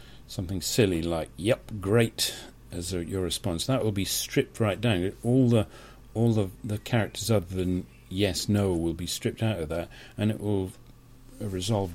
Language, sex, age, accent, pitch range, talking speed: English, male, 40-59, British, 90-120 Hz, 170 wpm